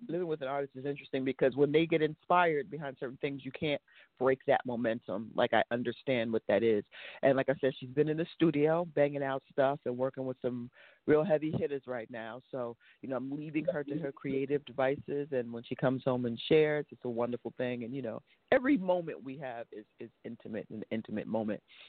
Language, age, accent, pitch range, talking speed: English, 40-59, American, 125-150 Hz, 220 wpm